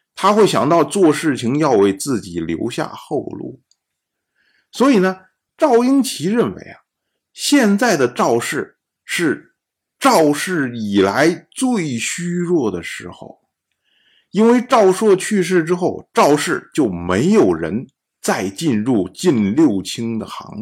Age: 50-69